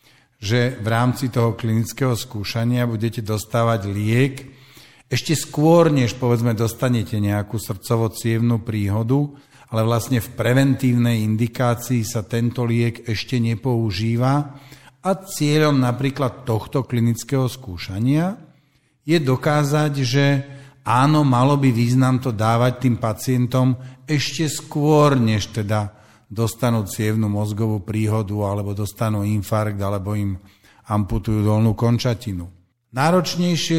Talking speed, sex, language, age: 110 wpm, male, Slovak, 50-69